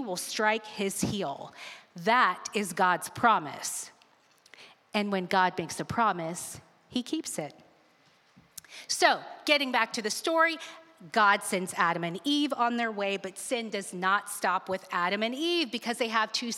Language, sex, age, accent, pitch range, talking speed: English, female, 30-49, American, 200-260 Hz, 160 wpm